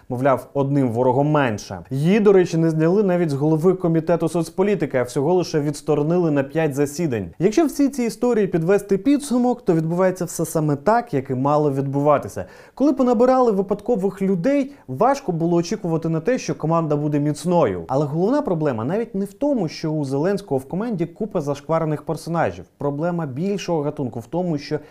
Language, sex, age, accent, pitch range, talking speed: Ukrainian, male, 30-49, native, 135-195 Hz, 170 wpm